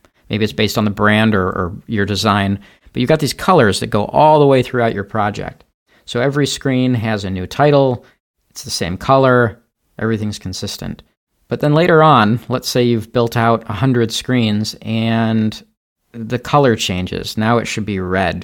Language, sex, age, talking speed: English, male, 40-59, 180 wpm